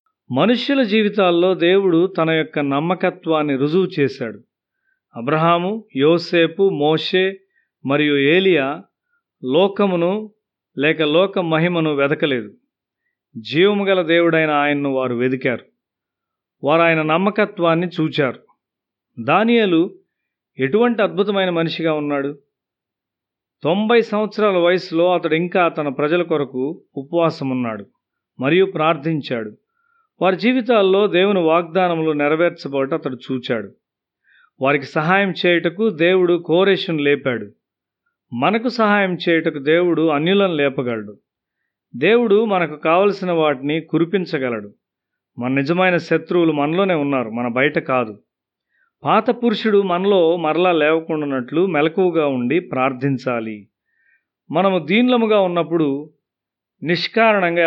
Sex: male